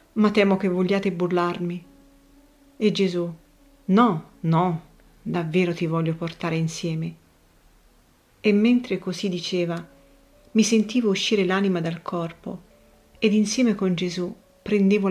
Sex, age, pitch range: female, 40-59, 175-210 Hz